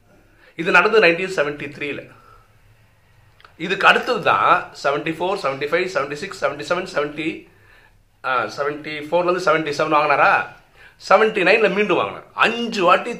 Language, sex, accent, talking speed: Tamil, male, native, 60 wpm